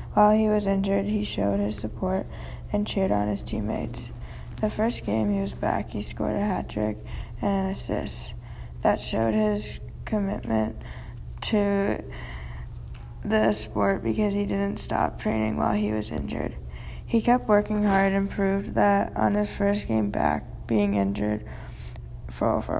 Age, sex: 10-29, female